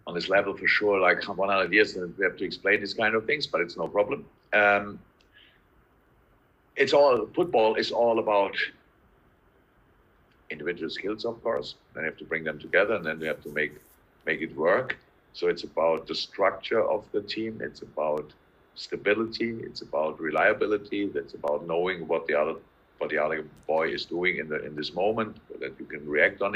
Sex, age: male, 50-69